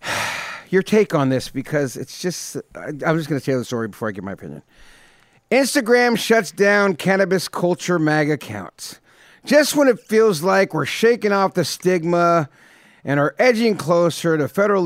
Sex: male